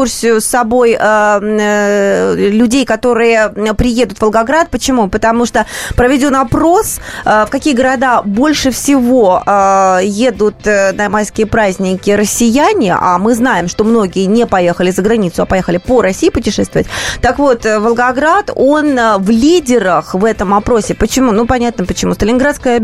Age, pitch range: 20-39, 210-255 Hz